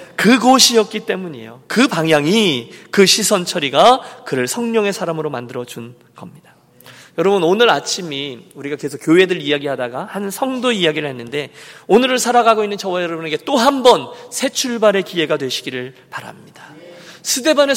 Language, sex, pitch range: Korean, male, 145-230 Hz